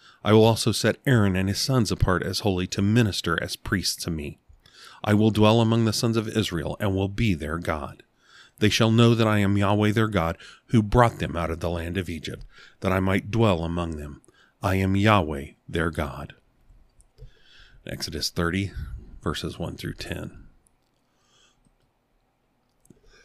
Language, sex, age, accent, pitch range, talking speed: English, male, 40-59, American, 85-110 Hz, 160 wpm